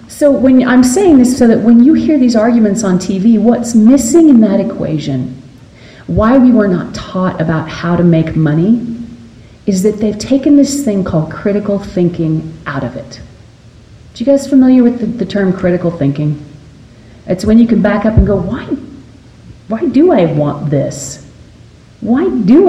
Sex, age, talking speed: female, 40-59, 175 wpm